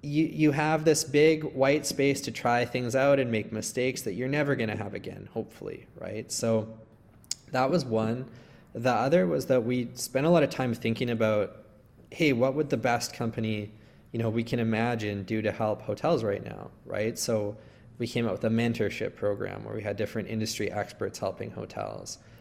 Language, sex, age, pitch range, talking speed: English, male, 20-39, 110-125 Hz, 195 wpm